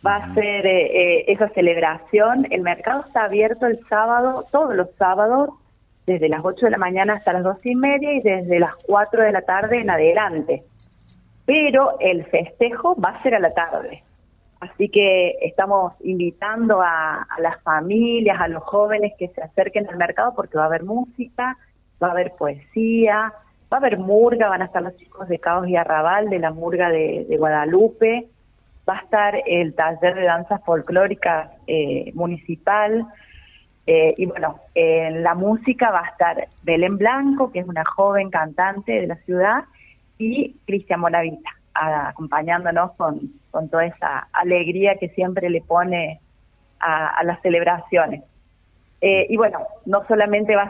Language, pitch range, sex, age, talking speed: Spanish, 170-215 Hz, female, 30-49, 170 wpm